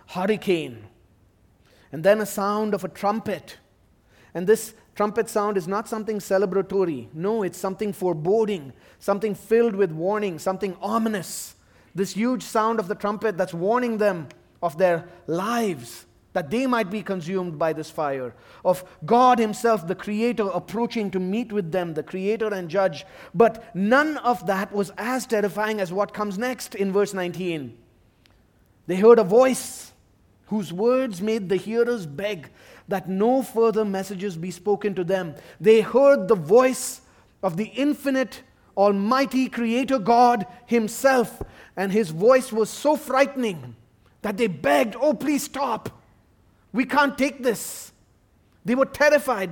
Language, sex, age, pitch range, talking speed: English, male, 30-49, 175-235 Hz, 150 wpm